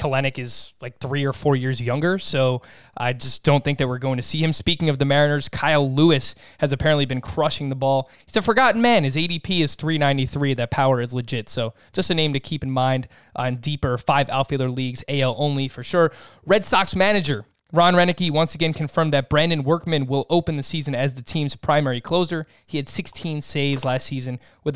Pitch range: 130-160 Hz